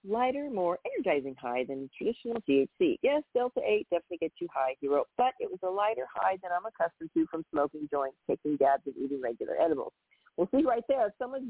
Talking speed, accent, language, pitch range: 215 wpm, American, English, 150-235 Hz